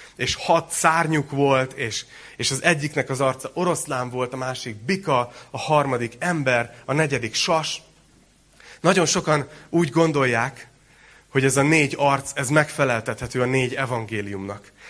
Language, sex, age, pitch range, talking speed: Hungarian, male, 30-49, 110-135 Hz, 140 wpm